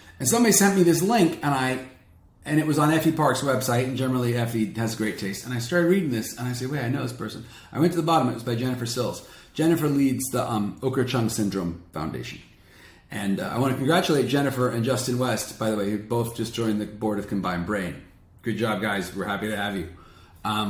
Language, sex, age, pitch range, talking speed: English, male, 40-59, 90-125 Hz, 240 wpm